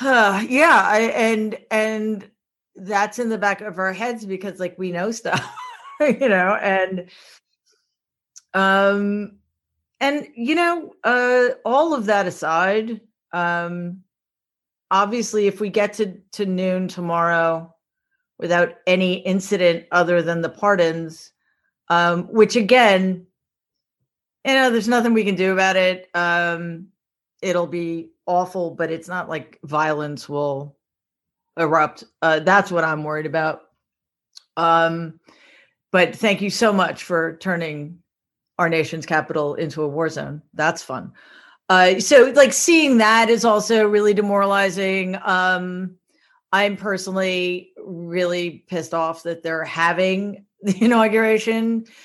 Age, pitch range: 40-59, 170-215 Hz